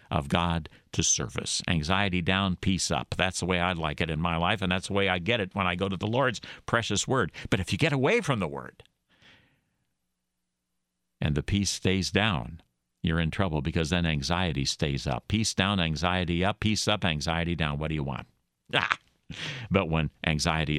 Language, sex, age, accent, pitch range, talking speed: English, male, 60-79, American, 80-135 Hz, 200 wpm